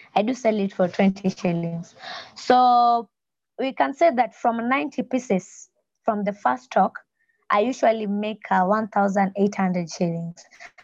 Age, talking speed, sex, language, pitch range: 20-39, 140 wpm, female, English, 190-240 Hz